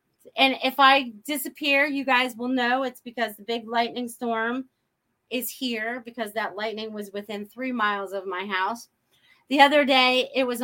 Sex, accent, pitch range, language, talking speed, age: female, American, 200-265 Hz, English, 175 wpm, 30-49